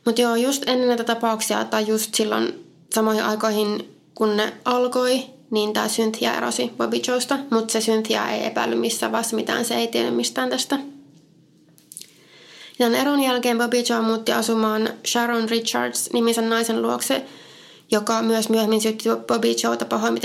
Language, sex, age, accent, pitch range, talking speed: Finnish, female, 20-39, native, 215-245 Hz, 155 wpm